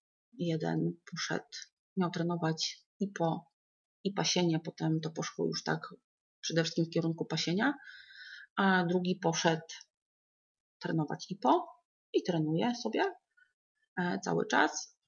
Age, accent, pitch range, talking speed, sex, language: 30-49, native, 165-220 Hz, 115 wpm, female, Polish